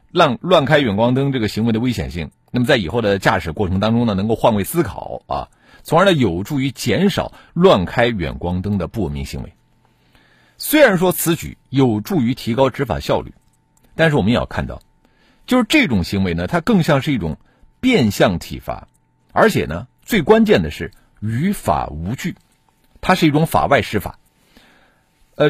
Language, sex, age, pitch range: Chinese, male, 50-69, 100-155 Hz